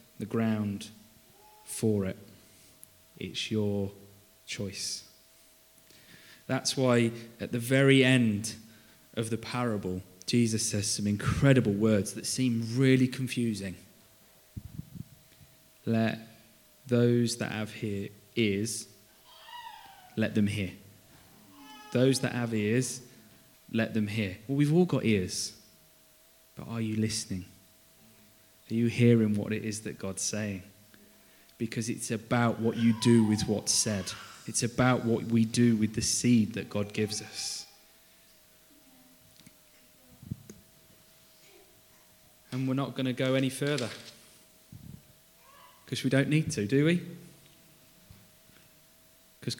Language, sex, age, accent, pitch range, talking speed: English, male, 20-39, British, 105-125 Hz, 115 wpm